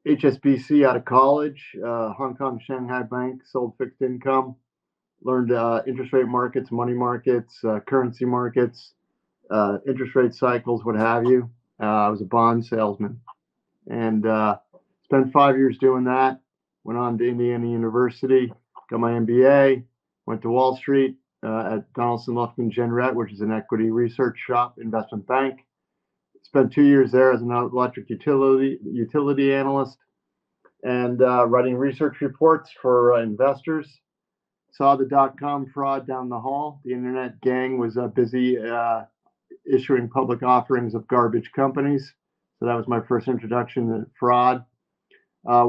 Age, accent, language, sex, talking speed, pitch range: 50-69, American, English, male, 150 wpm, 120-130 Hz